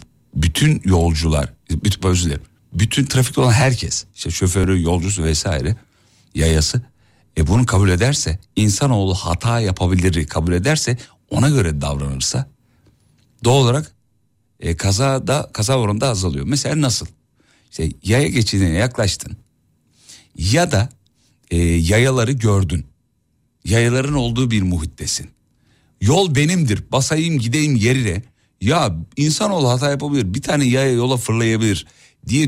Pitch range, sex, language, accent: 95-130 Hz, male, Turkish, native